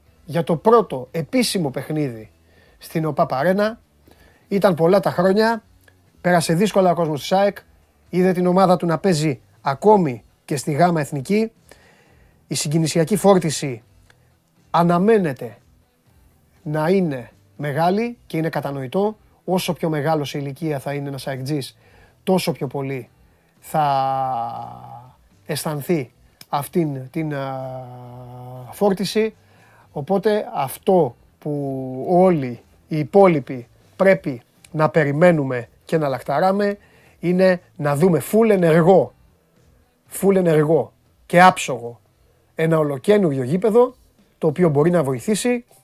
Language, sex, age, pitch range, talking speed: Greek, male, 30-49, 130-185 Hz, 110 wpm